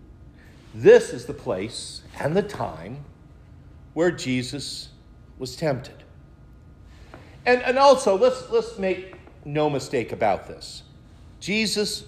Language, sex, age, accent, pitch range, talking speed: English, male, 50-69, American, 130-190 Hz, 110 wpm